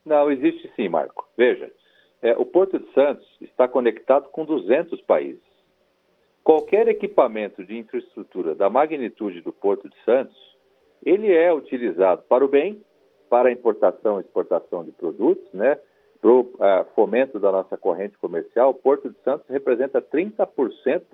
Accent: Brazilian